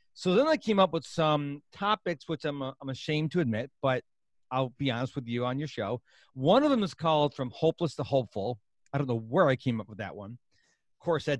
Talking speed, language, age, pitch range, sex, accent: 240 wpm, English, 40-59, 125-175 Hz, male, American